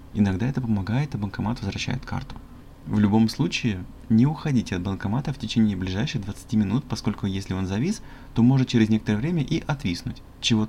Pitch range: 100-125 Hz